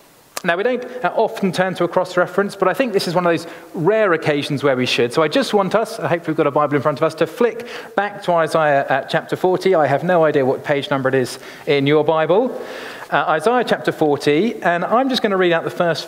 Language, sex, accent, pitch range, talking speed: English, male, British, 140-190 Hz, 255 wpm